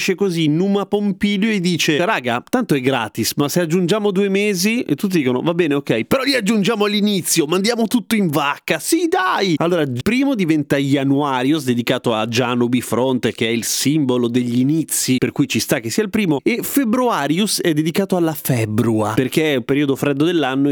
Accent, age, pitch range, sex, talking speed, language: native, 30-49, 120-170 Hz, male, 185 wpm, Italian